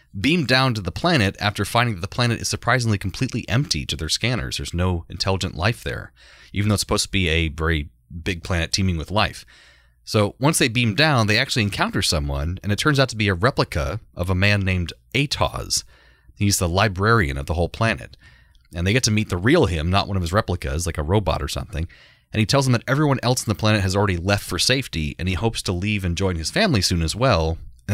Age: 30-49